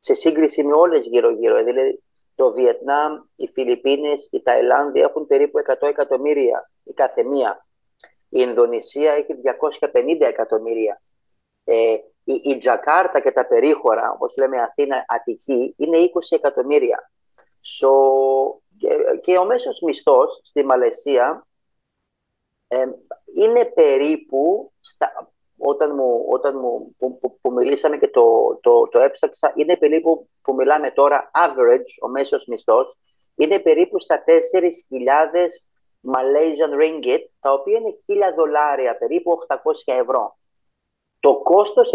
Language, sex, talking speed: Greek, male, 120 wpm